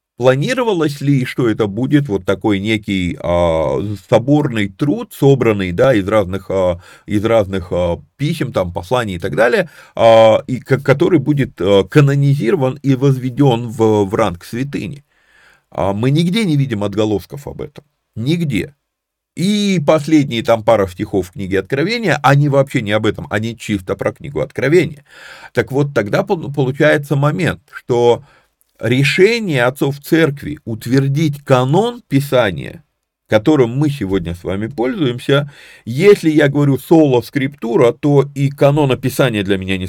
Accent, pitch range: native, 105-145 Hz